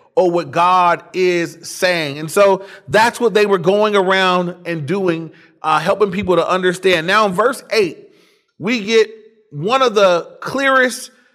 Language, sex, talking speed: English, male, 160 wpm